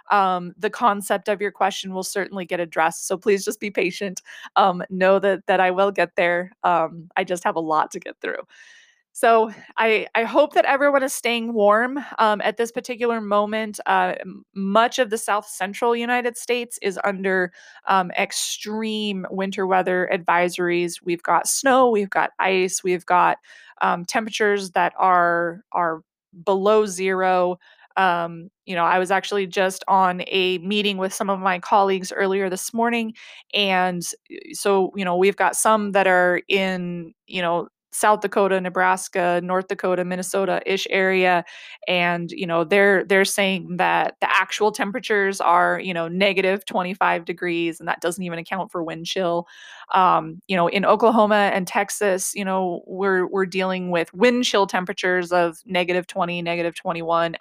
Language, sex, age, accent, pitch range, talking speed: English, female, 20-39, American, 180-210 Hz, 165 wpm